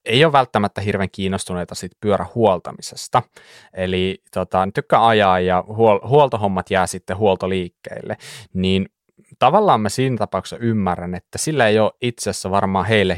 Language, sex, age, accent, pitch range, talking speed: Finnish, male, 20-39, native, 95-120 Hz, 140 wpm